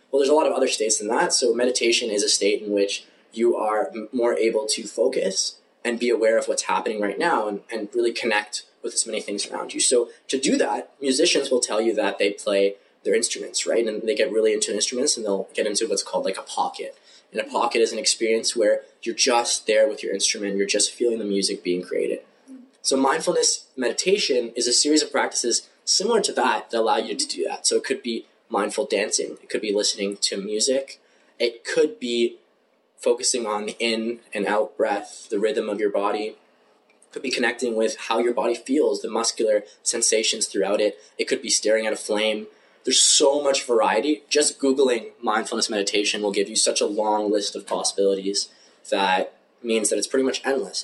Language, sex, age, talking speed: English, male, 20-39, 210 wpm